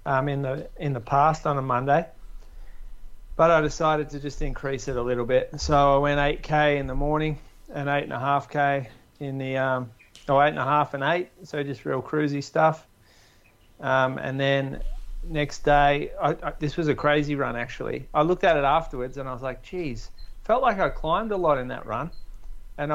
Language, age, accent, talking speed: English, 30-49, Australian, 205 wpm